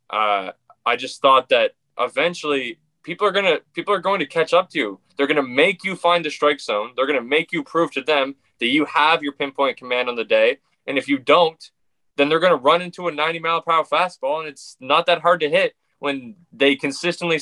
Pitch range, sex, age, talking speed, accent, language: 140-190 Hz, male, 20-39, 225 wpm, American, English